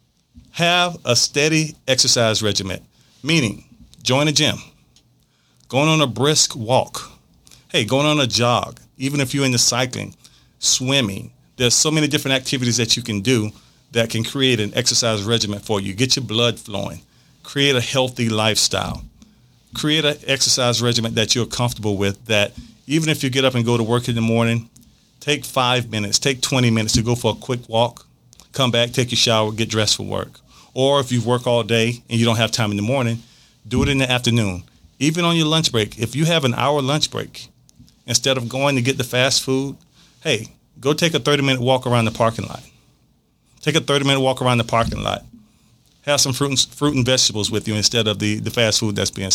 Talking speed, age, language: 200 wpm, 40-59, English